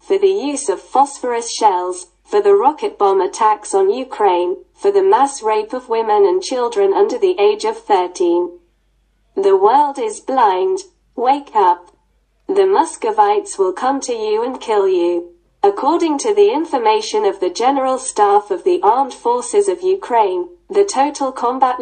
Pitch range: 275-415 Hz